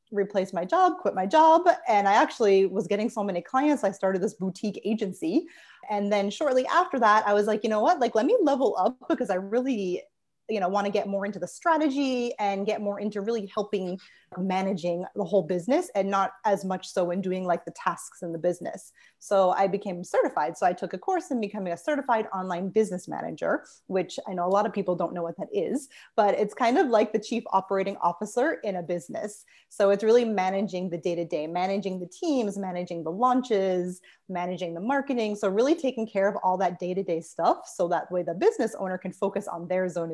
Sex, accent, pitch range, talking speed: female, American, 185-235 Hz, 215 wpm